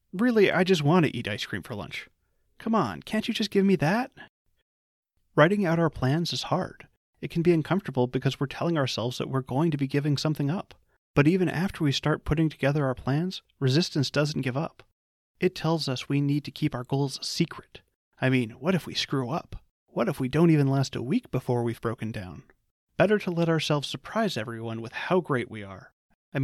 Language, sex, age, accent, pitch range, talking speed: English, male, 30-49, American, 130-165 Hz, 215 wpm